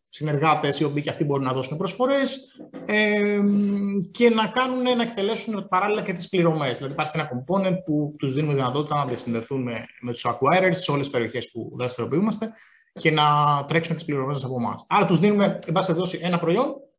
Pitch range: 155-215 Hz